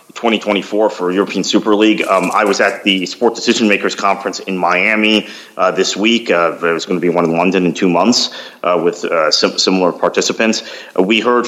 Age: 30-49